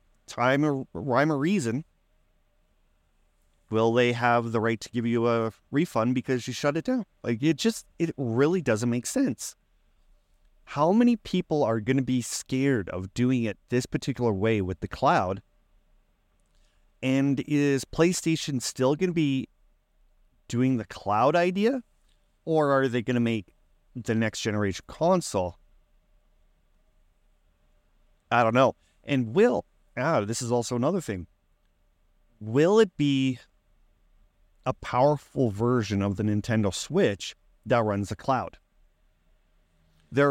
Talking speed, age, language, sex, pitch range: 135 wpm, 30-49, English, male, 90-135 Hz